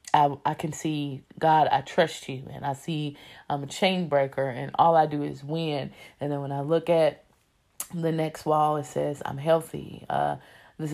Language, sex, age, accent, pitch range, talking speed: English, female, 20-39, American, 145-170 Hz, 195 wpm